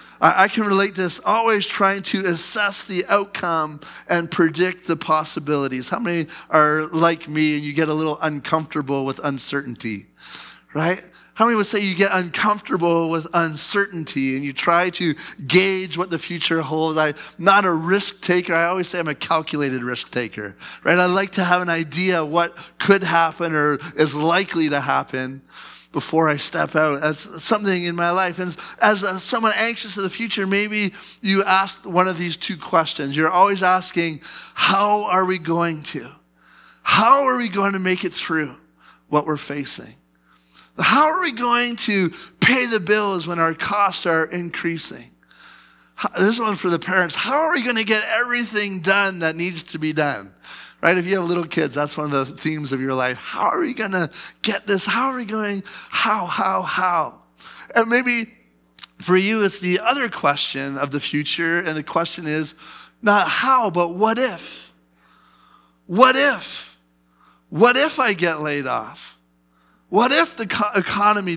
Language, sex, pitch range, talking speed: English, male, 150-200 Hz, 175 wpm